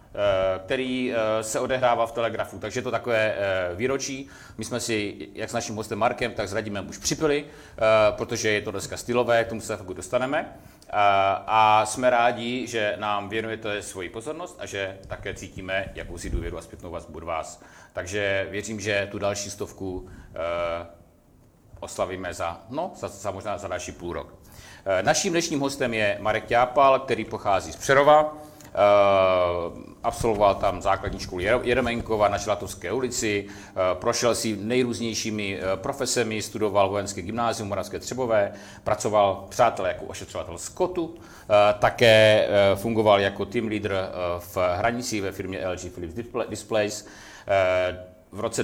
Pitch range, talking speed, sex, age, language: 95-120 Hz, 135 wpm, male, 40-59, Czech